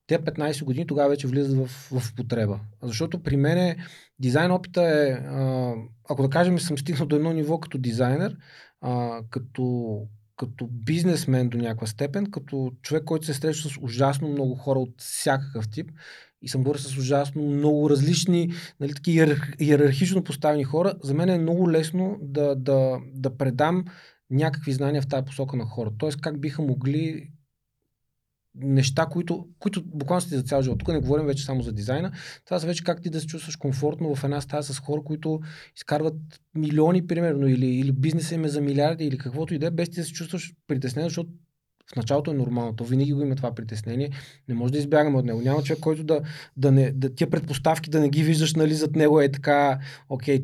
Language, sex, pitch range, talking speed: Bulgarian, male, 135-160 Hz, 195 wpm